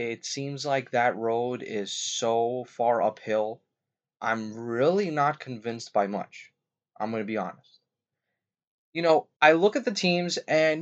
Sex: male